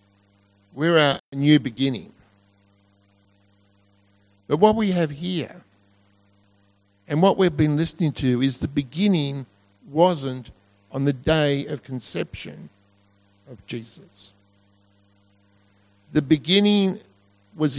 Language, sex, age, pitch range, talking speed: English, male, 50-69, 100-160 Hz, 100 wpm